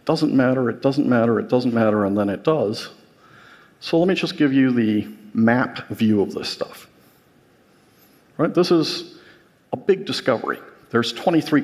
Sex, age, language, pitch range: male, 50-69, Korean, 115-150 Hz